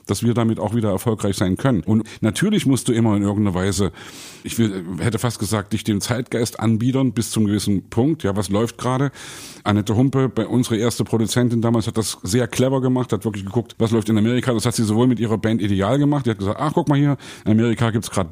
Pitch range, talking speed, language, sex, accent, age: 110-130 Hz, 235 wpm, German, male, German, 50-69